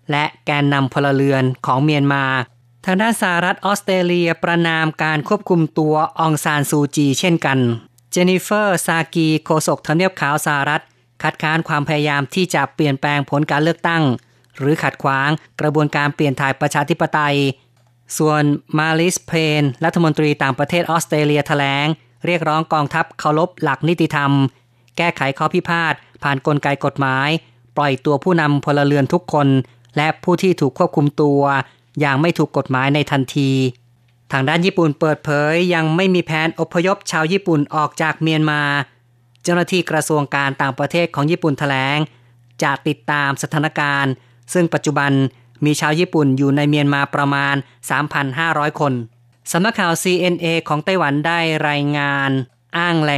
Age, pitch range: 30-49, 140-160 Hz